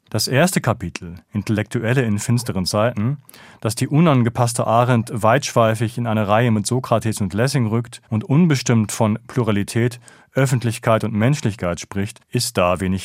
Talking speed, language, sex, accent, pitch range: 145 wpm, German, male, German, 105-125 Hz